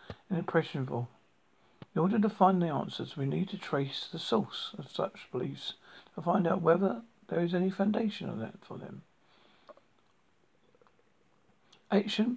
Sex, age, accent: male, 50-69, British